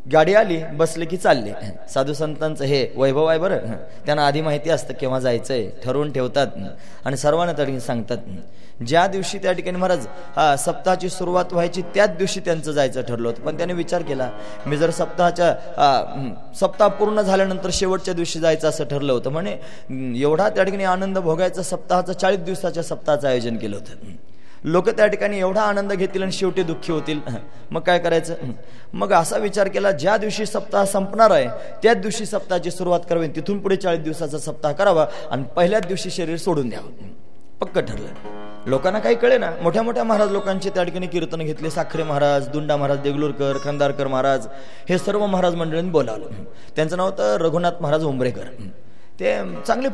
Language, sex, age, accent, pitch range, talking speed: Marathi, male, 20-39, native, 145-190 Hz, 170 wpm